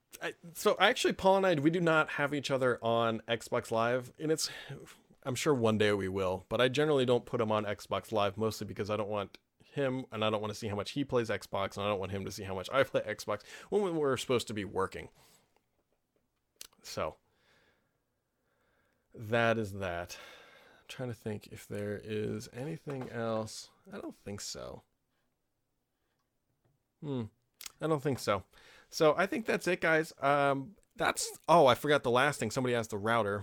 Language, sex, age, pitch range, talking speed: English, male, 30-49, 110-140 Hz, 190 wpm